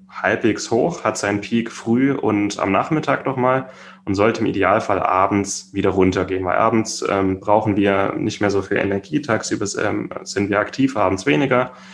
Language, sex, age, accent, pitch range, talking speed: German, male, 10-29, German, 95-110 Hz, 170 wpm